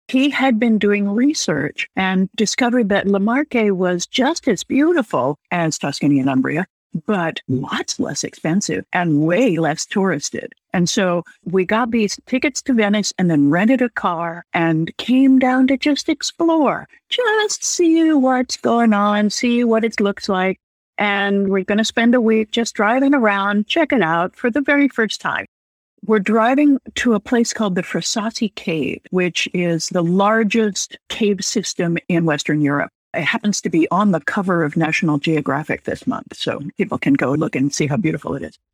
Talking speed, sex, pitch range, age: 175 wpm, female, 180-255 Hz, 60-79